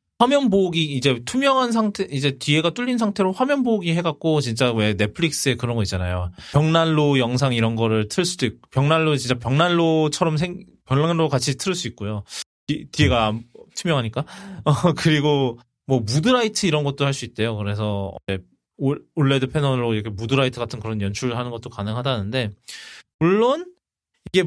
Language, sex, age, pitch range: Korean, male, 20-39, 115-165 Hz